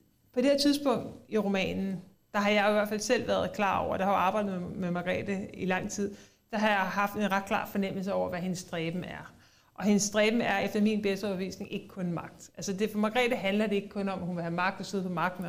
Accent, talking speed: native, 265 wpm